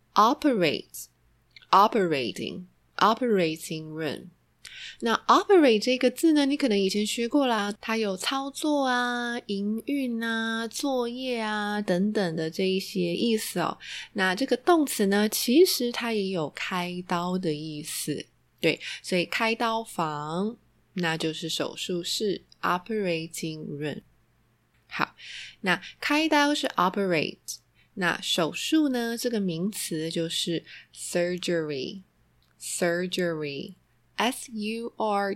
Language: Chinese